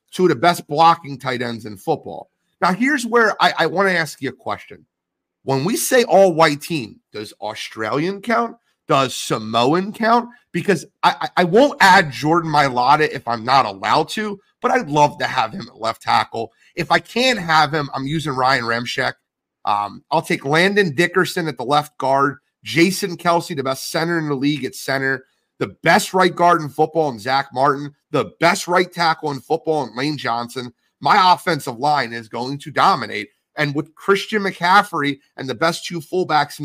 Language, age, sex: English, 30-49, male